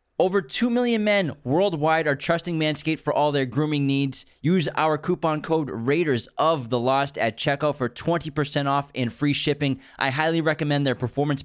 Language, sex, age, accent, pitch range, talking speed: English, male, 20-39, American, 120-155 Hz, 180 wpm